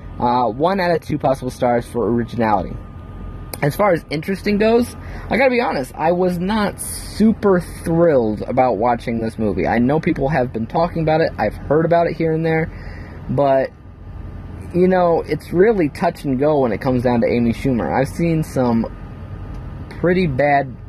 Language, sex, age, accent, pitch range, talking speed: English, male, 20-39, American, 105-150 Hz, 180 wpm